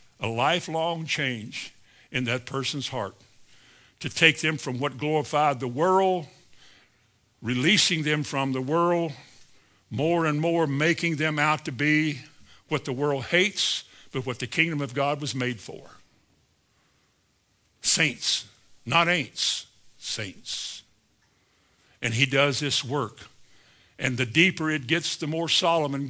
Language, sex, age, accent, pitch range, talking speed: English, male, 60-79, American, 130-180 Hz, 135 wpm